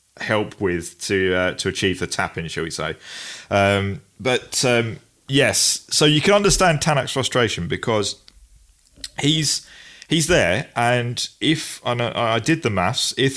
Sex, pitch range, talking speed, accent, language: male, 95-125 Hz, 150 wpm, British, English